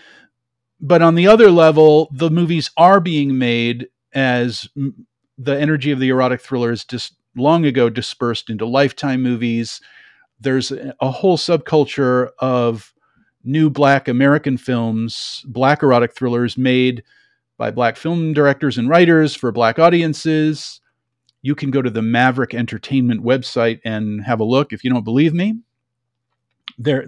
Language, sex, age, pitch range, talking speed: English, male, 40-59, 120-145 Hz, 140 wpm